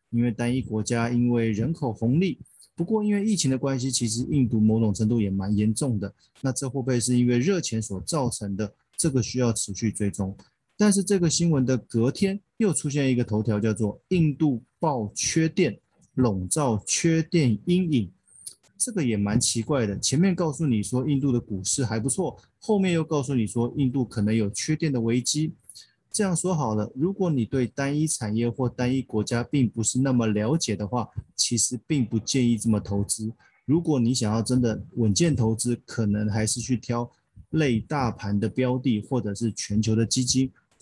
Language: Chinese